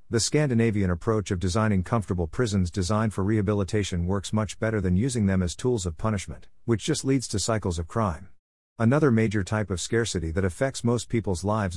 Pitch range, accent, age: 90-115 Hz, American, 50-69